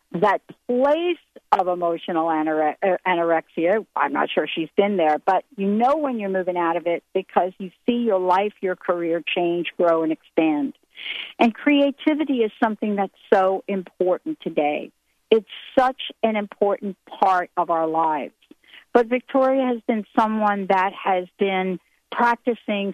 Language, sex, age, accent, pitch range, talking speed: English, female, 50-69, American, 180-230 Hz, 145 wpm